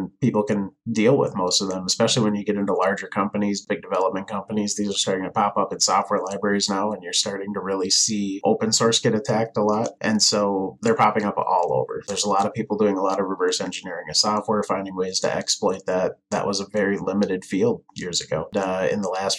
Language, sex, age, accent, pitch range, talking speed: English, male, 20-39, American, 100-115 Hz, 235 wpm